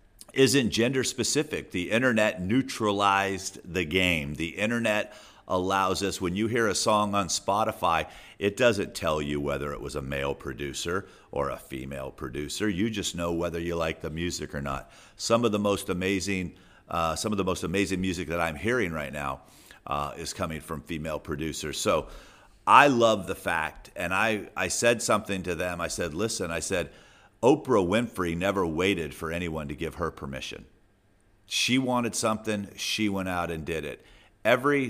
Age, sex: 50-69, male